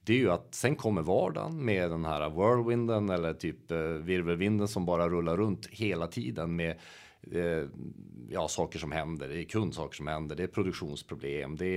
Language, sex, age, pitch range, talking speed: Swedish, male, 40-59, 80-100 Hz, 175 wpm